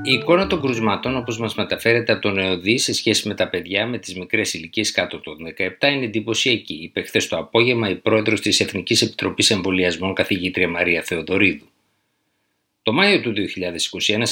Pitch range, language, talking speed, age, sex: 95-115 Hz, Greek, 170 wpm, 50-69, male